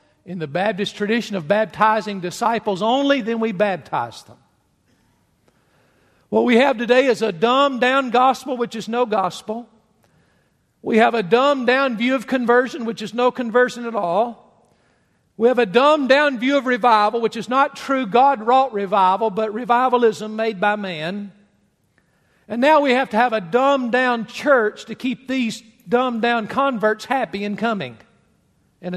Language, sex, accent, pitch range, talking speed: English, male, American, 155-245 Hz, 150 wpm